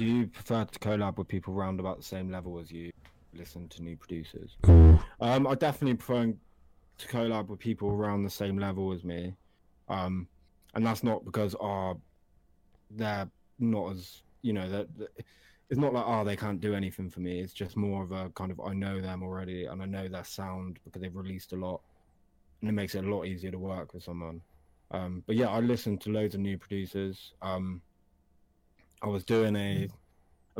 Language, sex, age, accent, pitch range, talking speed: English, male, 20-39, British, 85-100 Hz, 200 wpm